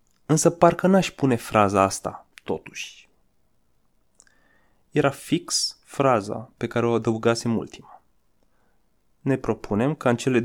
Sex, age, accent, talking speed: male, 20-39, native, 115 wpm